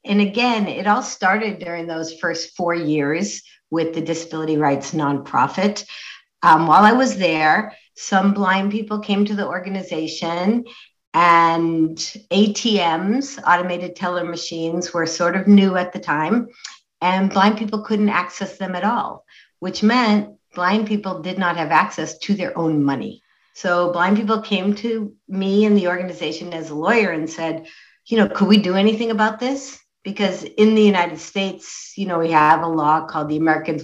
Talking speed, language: 170 wpm, English